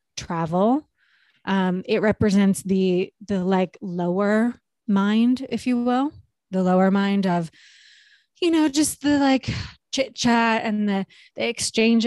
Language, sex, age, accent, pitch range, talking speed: English, female, 20-39, American, 195-235 Hz, 135 wpm